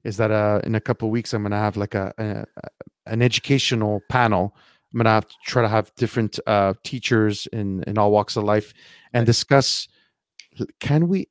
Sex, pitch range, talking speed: male, 105-135 Hz, 200 wpm